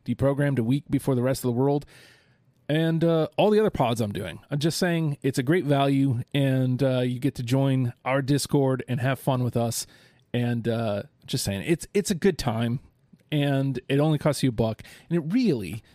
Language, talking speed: English, 210 wpm